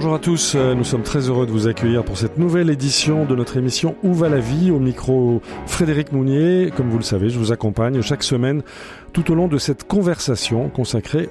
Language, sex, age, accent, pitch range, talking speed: French, male, 40-59, French, 110-150 Hz, 220 wpm